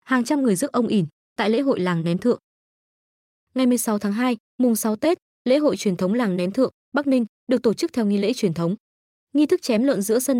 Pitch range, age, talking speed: 195-255 Hz, 20-39, 240 wpm